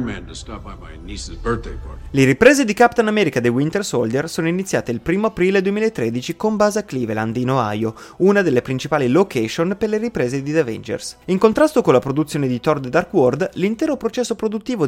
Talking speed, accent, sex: 175 wpm, native, male